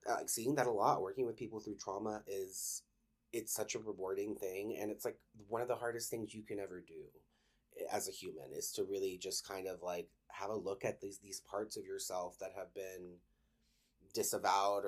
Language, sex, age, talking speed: English, male, 30-49, 205 wpm